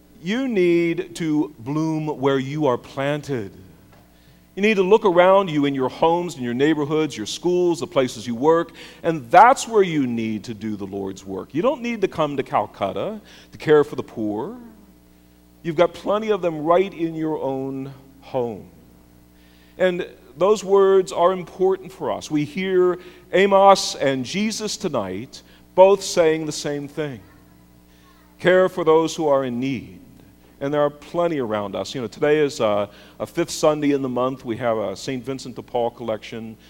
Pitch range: 105-155 Hz